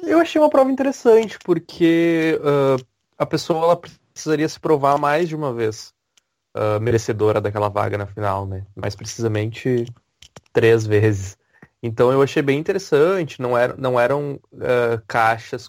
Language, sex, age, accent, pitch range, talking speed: English, male, 20-39, Brazilian, 120-170 Hz, 150 wpm